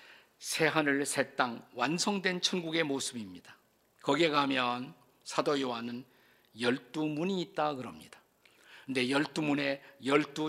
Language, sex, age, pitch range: Korean, male, 50-69, 135-180 Hz